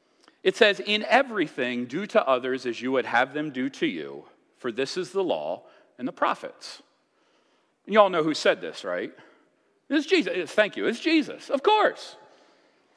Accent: American